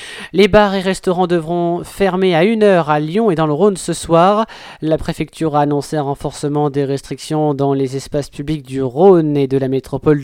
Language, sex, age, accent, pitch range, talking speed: French, male, 20-39, French, 140-175 Hz, 200 wpm